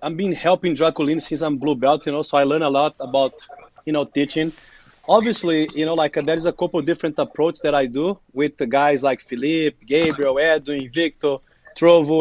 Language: English